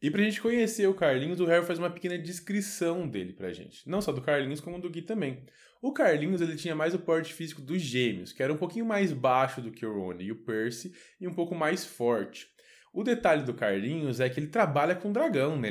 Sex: male